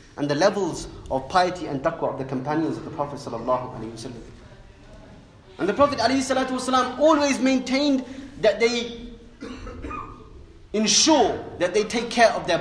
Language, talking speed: English, 135 wpm